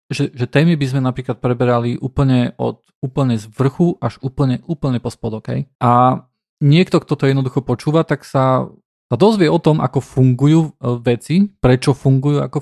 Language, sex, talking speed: Slovak, male, 165 wpm